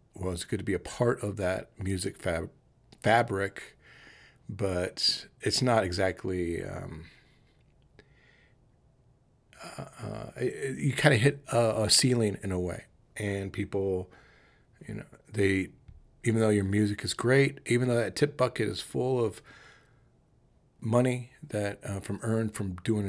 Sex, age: male, 40-59